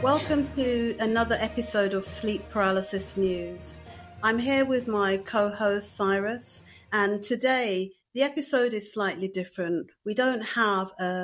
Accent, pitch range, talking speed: British, 185-220 Hz, 135 wpm